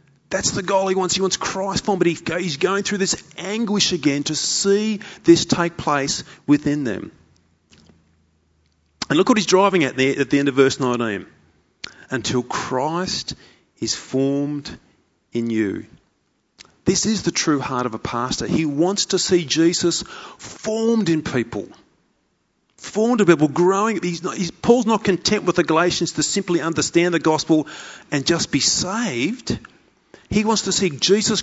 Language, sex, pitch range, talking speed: English, male, 155-200 Hz, 160 wpm